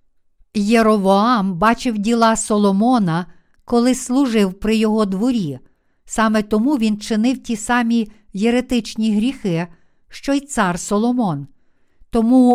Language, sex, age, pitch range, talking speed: Ukrainian, female, 50-69, 210-245 Hz, 105 wpm